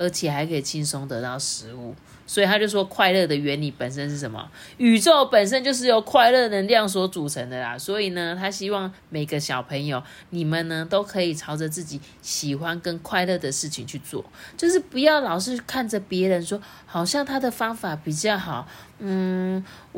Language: Chinese